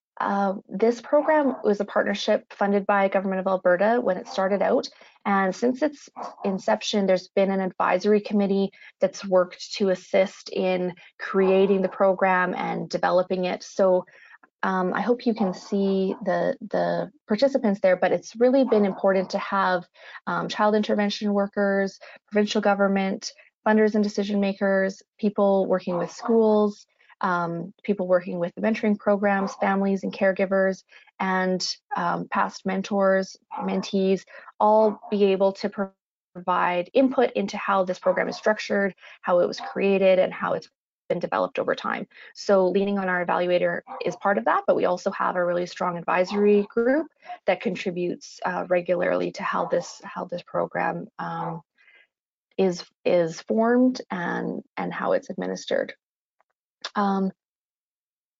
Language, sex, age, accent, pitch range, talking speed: English, female, 30-49, American, 190-215 Hz, 150 wpm